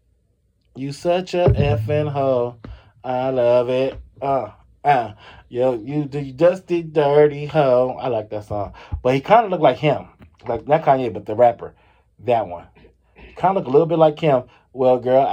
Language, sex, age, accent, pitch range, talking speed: English, male, 20-39, American, 110-140 Hz, 180 wpm